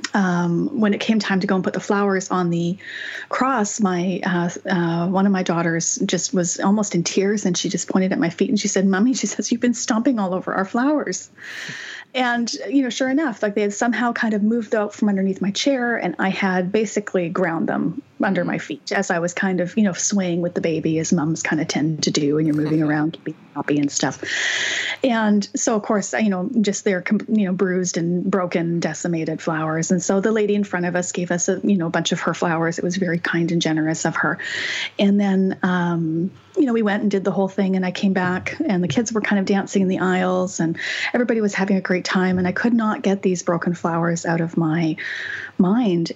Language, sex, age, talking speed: English, female, 30-49, 240 wpm